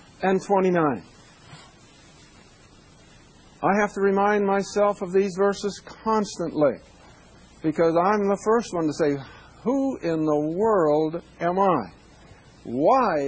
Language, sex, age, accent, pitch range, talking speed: English, male, 60-79, American, 160-220 Hz, 110 wpm